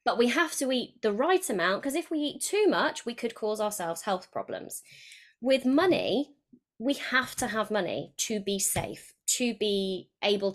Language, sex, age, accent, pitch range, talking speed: English, female, 20-39, British, 190-245 Hz, 190 wpm